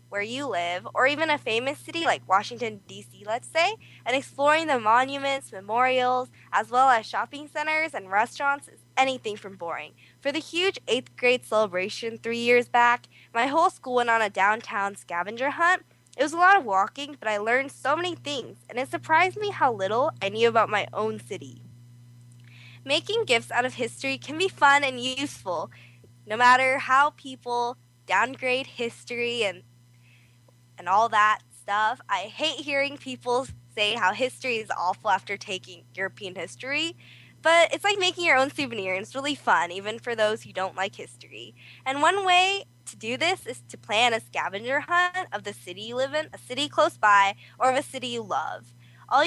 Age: 10-29